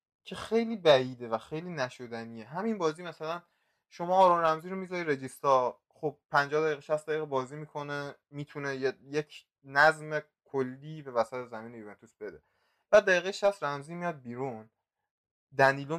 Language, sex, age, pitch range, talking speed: Persian, male, 20-39, 135-180 Hz, 145 wpm